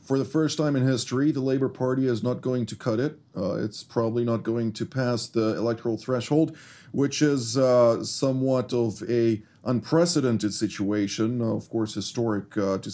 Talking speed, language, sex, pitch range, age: 175 wpm, English, male, 115-145 Hz, 40-59